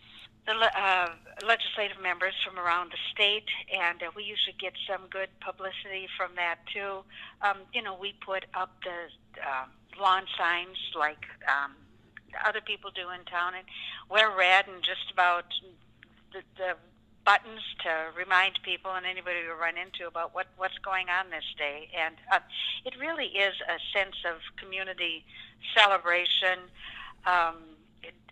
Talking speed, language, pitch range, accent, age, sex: 155 wpm, English, 175-210 Hz, American, 60-79, female